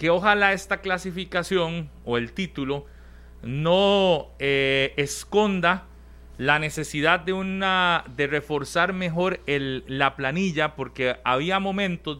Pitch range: 130-185 Hz